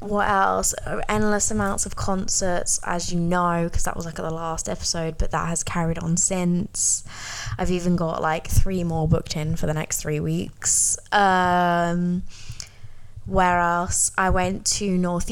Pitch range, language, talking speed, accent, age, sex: 175-205 Hz, English, 170 wpm, British, 10-29, female